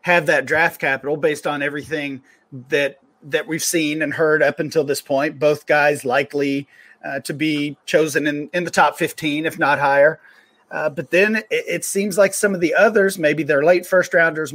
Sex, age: male, 40-59